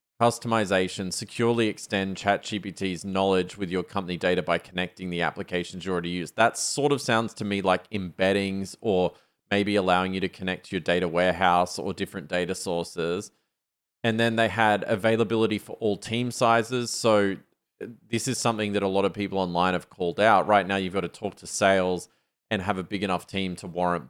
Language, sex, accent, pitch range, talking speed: English, male, Australian, 90-105 Hz, 190 wpm